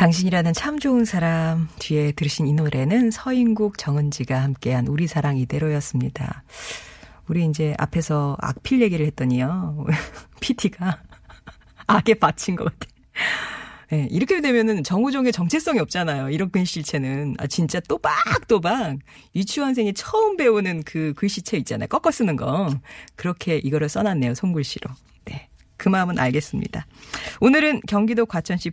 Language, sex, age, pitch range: Korean, female, 40-59, 145-210 Hz